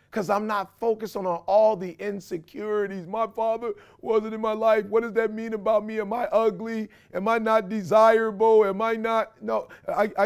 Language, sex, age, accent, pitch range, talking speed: English, male, 40-59, American, 170-225 Hz, 185 wpm